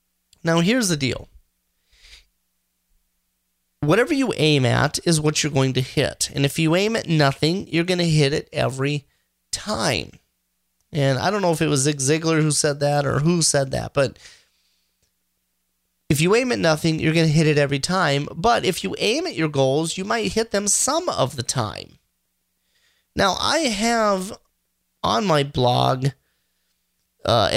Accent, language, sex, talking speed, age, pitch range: American, English, male, 170 wpm, 30-49, 135-170 Hz